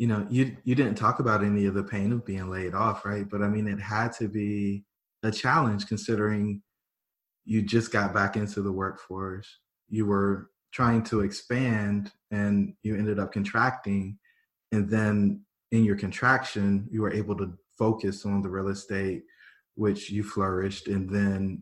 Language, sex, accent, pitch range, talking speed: English, male, American, 100-110 Hz, 170 wpm